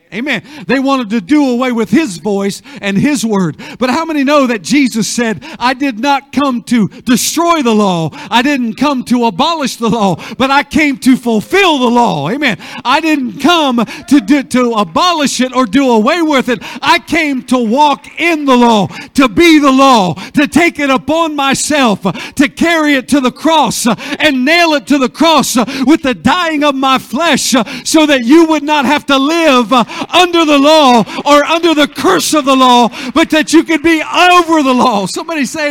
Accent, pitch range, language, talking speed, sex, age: American, 200-295 Hz, English, 195 wpm, male, 50-69